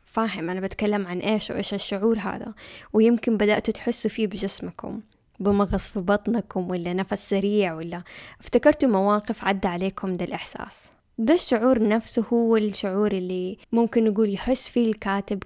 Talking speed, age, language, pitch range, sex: 140 wpm, 10-29, Arabic, 190-225 Hz, female